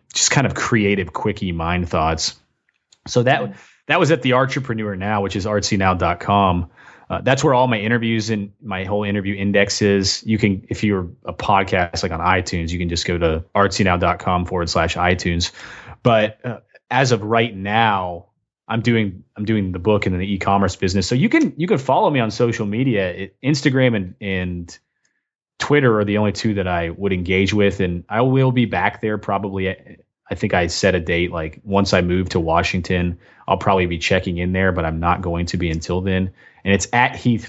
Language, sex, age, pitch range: English, male, 30-49, 90-110 Hz